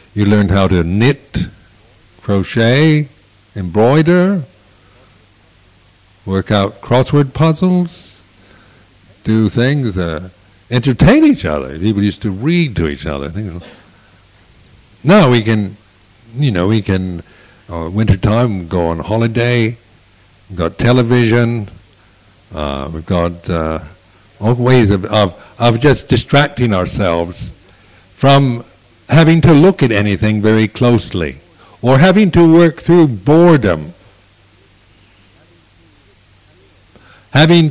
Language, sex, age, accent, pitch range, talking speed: English, male, 60-79, American, 95-130 Hz, 105 wpm